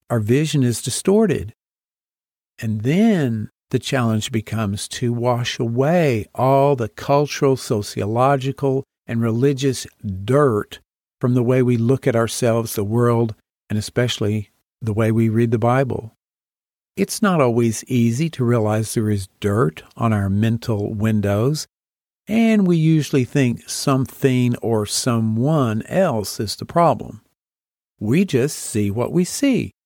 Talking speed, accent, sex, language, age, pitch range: 135 wpm, American, male, English, 50-69, 115-155 Hz